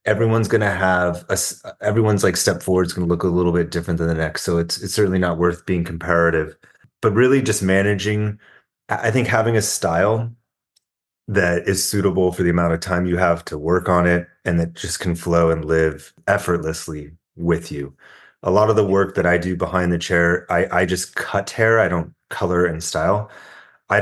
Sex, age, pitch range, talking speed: male, 30-49, 85-95 Hz, 205 wpm